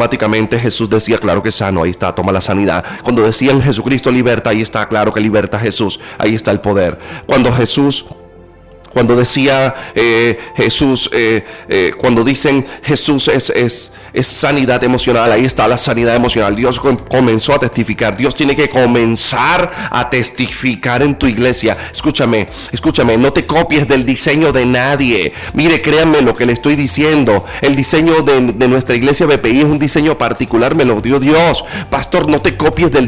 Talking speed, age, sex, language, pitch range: 175 wpm, 30-49, male, Spanish, 120-165 Hz